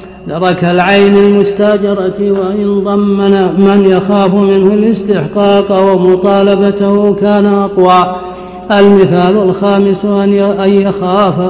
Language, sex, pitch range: Arabic, male, 195-205 Hz